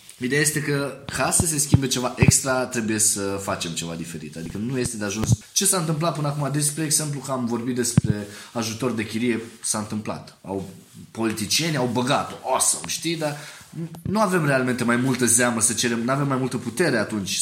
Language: Romanian